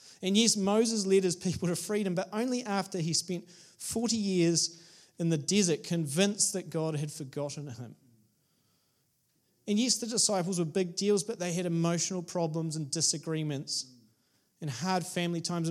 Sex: male